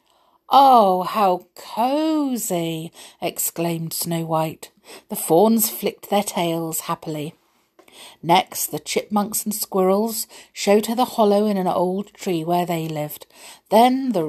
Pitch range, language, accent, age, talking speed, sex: 160-215 Hz, English, British, 50-69, 125 wpm, female